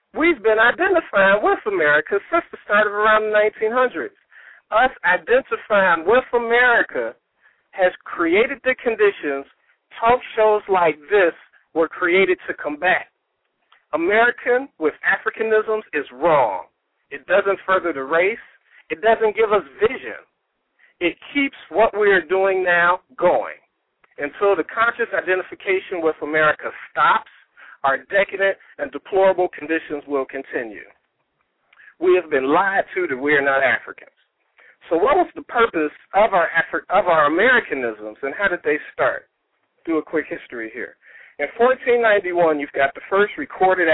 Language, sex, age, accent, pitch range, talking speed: English, male, 60-79, American, 150-230 Hz, 140 wpm